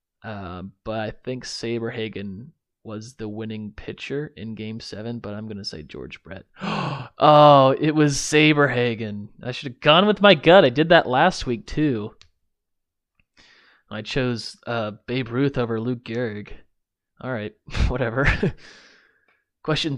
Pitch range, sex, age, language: 105-135 Hz, male, 20-39, English